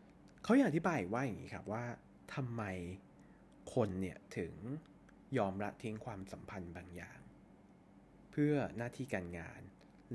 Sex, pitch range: male, 95-130 Hz